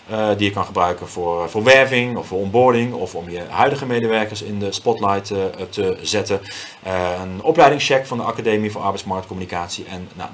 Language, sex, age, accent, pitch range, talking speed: Dutch, male, 30-49, Dutch, 105-140 Hz, 170 wpm